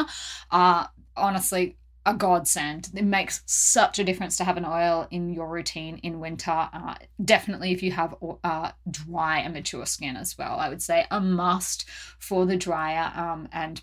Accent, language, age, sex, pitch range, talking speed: Australian, English, 20-39, female, 175-205 Hz, 170 wpm